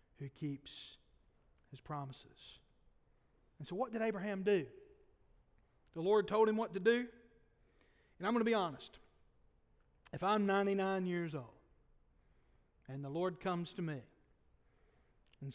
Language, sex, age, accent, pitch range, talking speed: English, male, 40-59, American, 150-195 Hz, 135 wpm